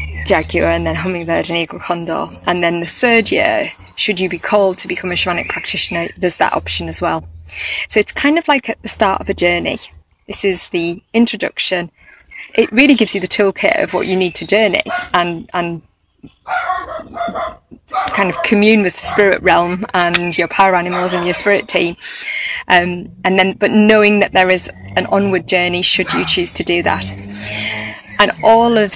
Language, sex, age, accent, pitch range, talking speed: English, female, 20-39, British, 180-210 Hz, 185 wpm